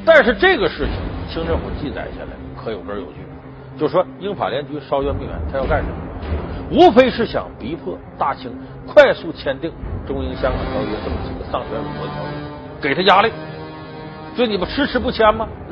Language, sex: Chinese, male